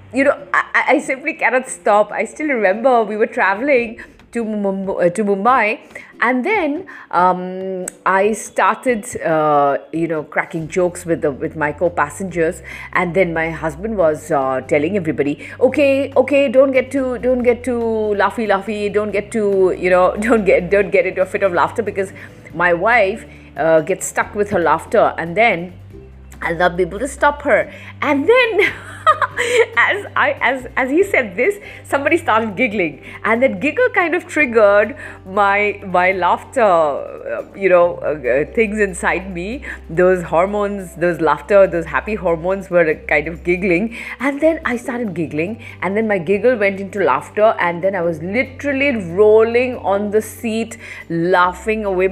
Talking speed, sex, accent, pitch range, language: 165 wpm, female, Indian, 175-250 Hz, English